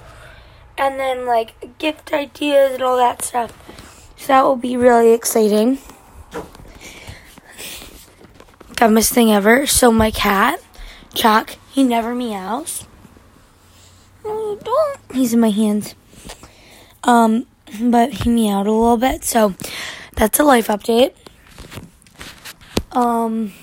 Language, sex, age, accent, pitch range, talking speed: English, female, 20-39, American, 215-260 Hz, 110 wpm